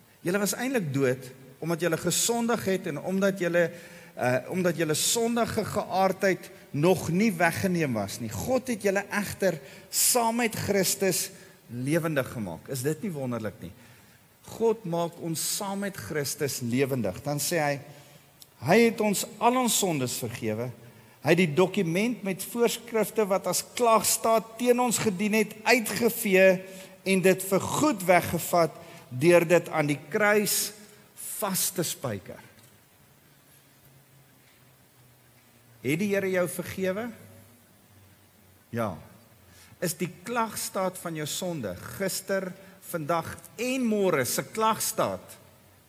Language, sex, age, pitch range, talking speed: English, male, 50-69, 140-210 Hz, 125 wpm